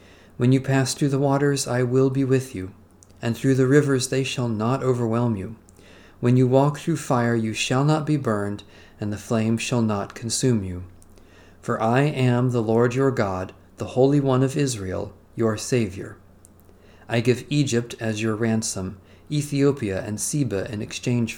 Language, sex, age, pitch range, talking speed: English, male, 40-59, 100-130 Hz, 175 wpm